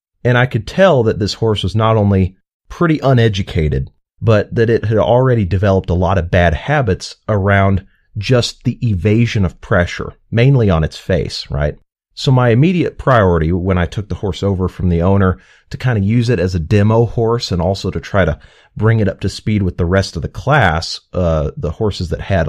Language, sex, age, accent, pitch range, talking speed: English, male, 30-49, American, 90-115 Hz, 205 wpm